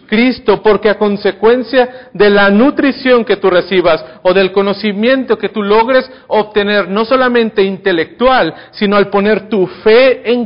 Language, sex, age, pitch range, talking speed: Spanish, male, 40-59, 175-220 Hz, 150 wpm